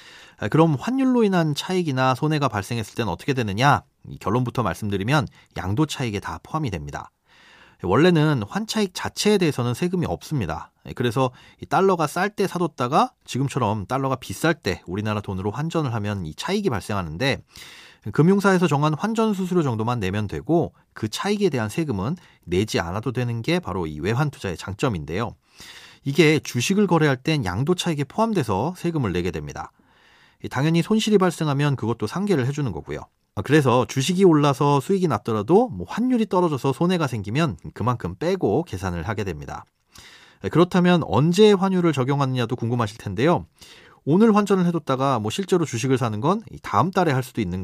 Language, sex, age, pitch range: Korean, male, 30-49, 110-175 Hz